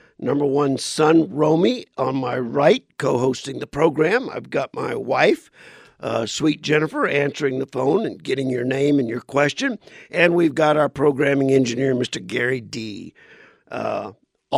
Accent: American